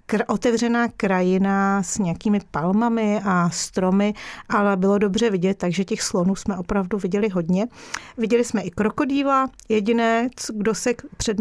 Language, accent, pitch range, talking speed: Czech, native, 195-225 Hz, 135 wpm